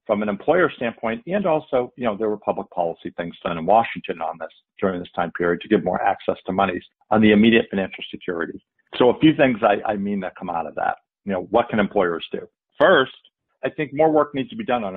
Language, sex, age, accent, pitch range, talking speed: English, male, 50-69, American, 95-120 Hz, 245 wpm